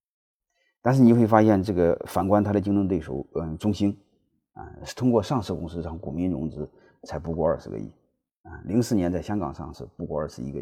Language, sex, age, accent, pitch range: Chinese, male, 30-49, native, 80-110 Hz